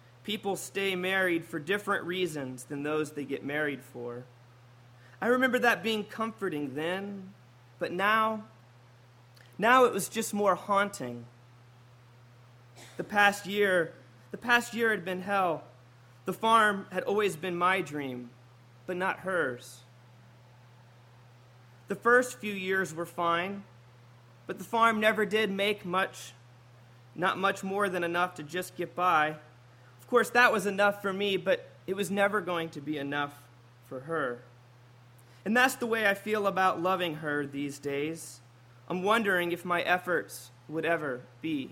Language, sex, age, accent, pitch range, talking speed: English, male, 30-49, American, 120-200 Hz, 150 wpm